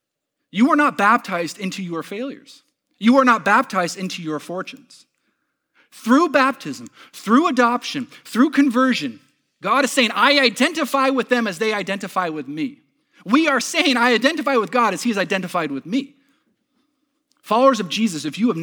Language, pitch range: English, 160-260 Hz